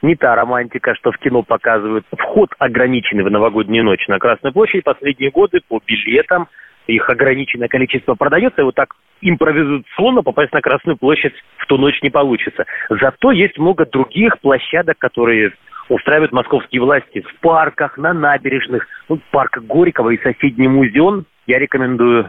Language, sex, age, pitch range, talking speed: Russian, male, 30-49, 125-155 Hz, 155 wpm